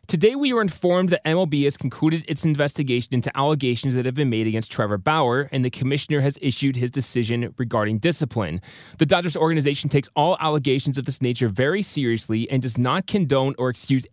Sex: male